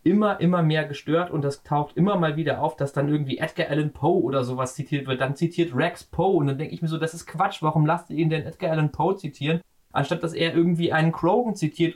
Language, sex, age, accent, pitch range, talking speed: German, male, 30-49, German, 140-170 Hz, 250 wpm